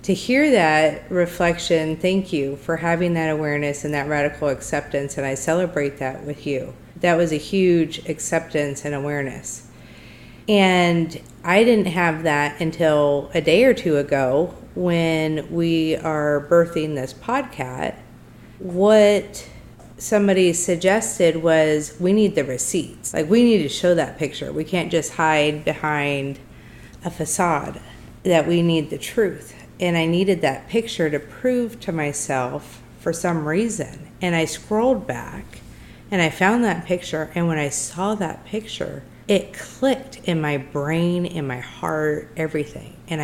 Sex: female